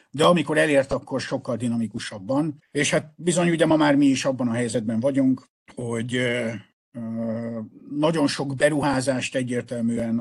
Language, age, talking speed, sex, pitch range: Hungarian, 50-69, 135 wpm, male, 115-140 Hz